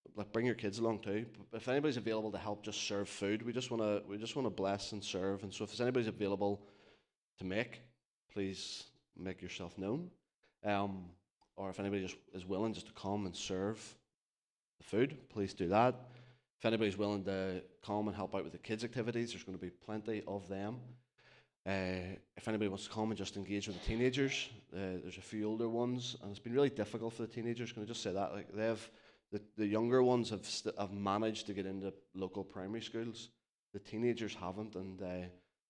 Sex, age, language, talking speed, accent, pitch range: male, 20-39, English, 210 wpm, British, 95-110 Hz